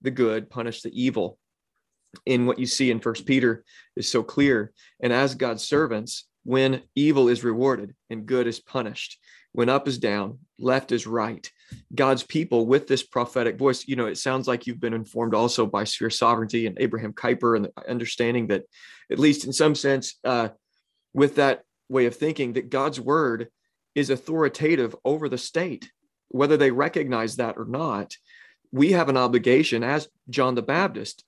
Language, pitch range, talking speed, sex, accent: English, 115-140 Hz, 175 wpm, male, American